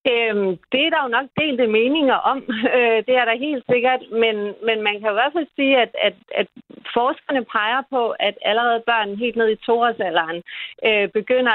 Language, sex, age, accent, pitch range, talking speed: Danish, female, 40-59, native, 195-245 Hz, 180 wpm